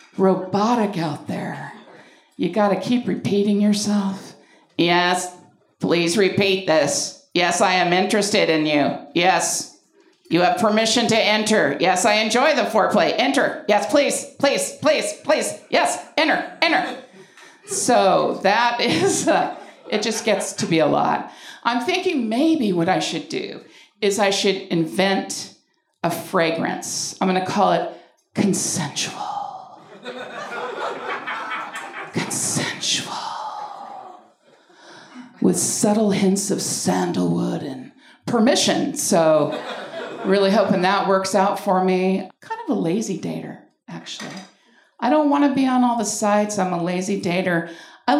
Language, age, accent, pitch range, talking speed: English, 50-69, American, 185-255 Hz, 125 wpm